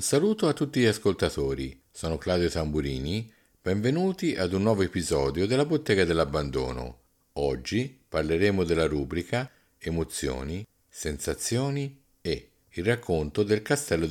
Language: Italian